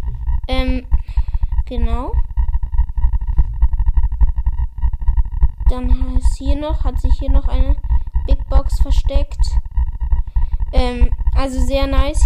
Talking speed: 90 wpm